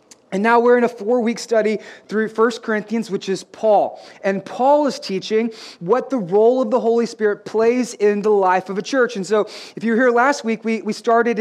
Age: 30-49